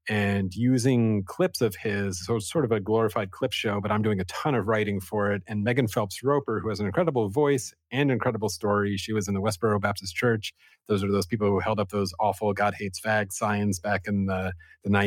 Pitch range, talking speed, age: 100-110 Hz, 225 wpm, 30-49